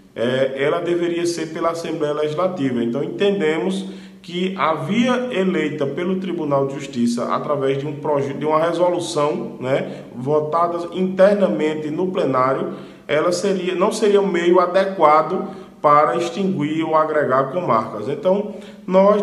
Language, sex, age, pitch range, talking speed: Portuguese, male, 20-39, 135-175 Hz, 140 wpm